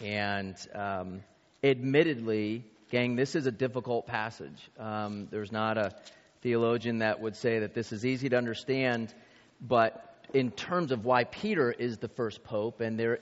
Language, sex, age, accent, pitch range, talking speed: English, male, 30-49, American, 110-130 Hz, 160 wpm